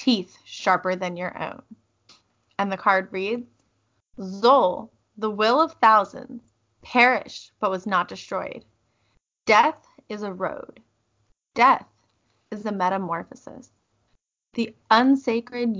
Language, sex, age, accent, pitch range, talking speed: English, female, 20-39, American, 190-230 Hz, 110 wpm